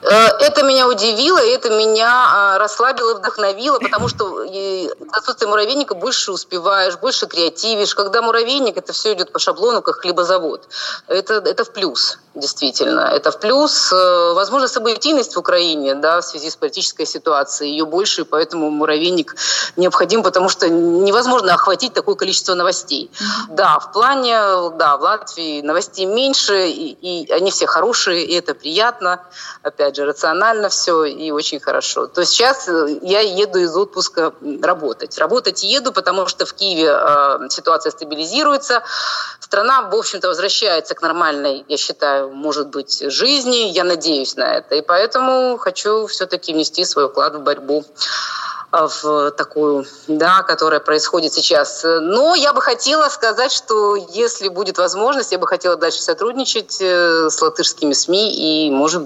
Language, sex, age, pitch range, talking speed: Russian, female, 30-49, 160-235 Hz, 145 wpm